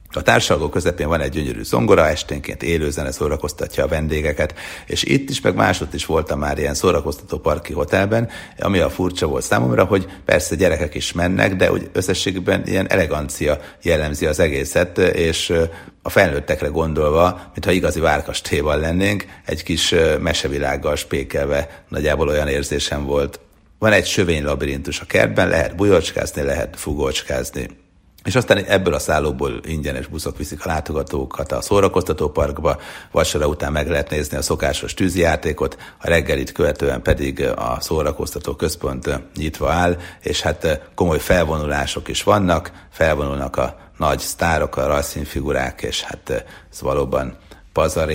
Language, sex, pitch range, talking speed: Hungarian, male, 70-85 Hz, 140 wpm